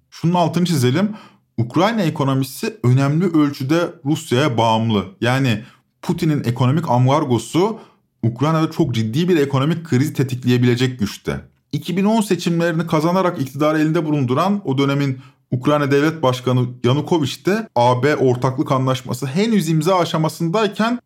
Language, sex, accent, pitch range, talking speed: Turkish, male, native, 130-190 Hz, 115 wpm